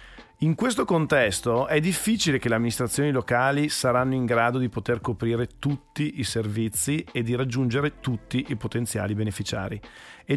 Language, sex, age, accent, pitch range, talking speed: Italian, male, 40-59, native, 110-150 Hz, 150 wpm